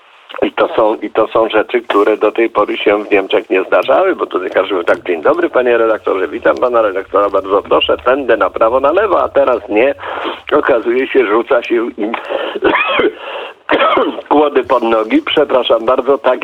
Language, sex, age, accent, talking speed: Polish, male, 50-69, native, 170 wpm